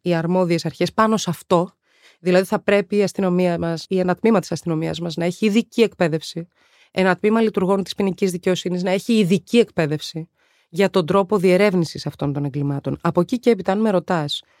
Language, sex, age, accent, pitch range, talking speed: Greek, female, 20-39, native, 165-215 Hz, 190 wpm